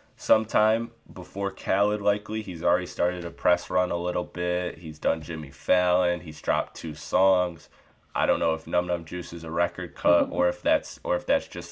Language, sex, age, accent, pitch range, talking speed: English, male, 20-39, American, 80-95 Hz, 200 wpm